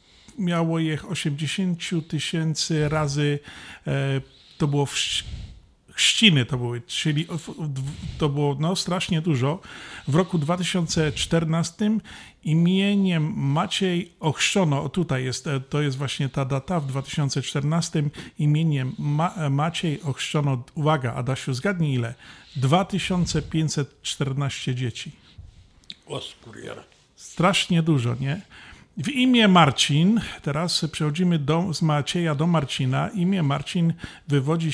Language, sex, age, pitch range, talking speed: Polish, male, 40-59, 140-170 Hz, 110 wpm